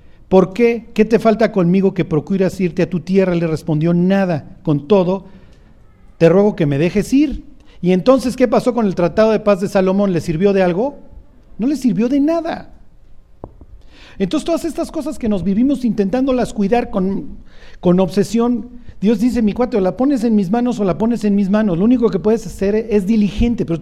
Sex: male